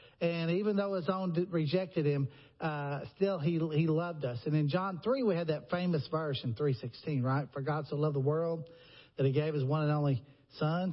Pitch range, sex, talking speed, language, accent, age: 145-190 Hz, male, 215 wpm, English, American, 50-69